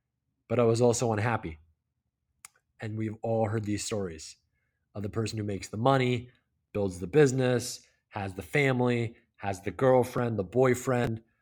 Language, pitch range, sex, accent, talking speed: English, 105-135 Hz, male, American, 150 wpm